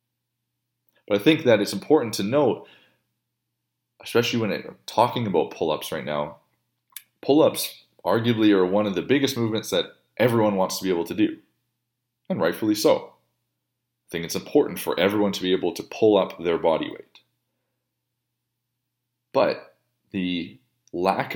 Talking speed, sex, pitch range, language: 150 wpm, male, 90-120 Hz, English